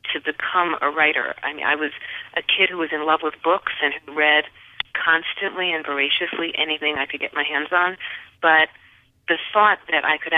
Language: English